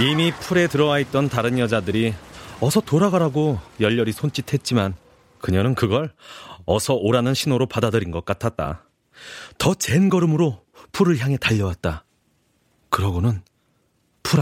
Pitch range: 95-135 Hz